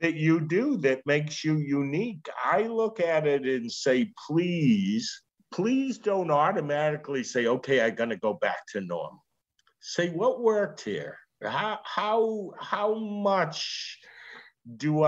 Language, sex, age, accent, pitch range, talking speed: English, male, 50-69, American, 130-195 Hz, 130 wpm